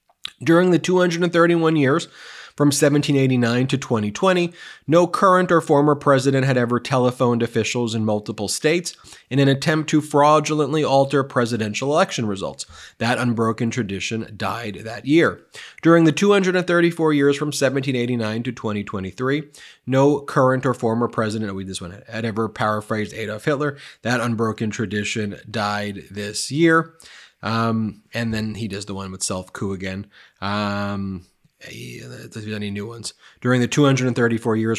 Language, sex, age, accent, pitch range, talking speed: English, male, 30-49, American, 105-140 Hz, 140 wpm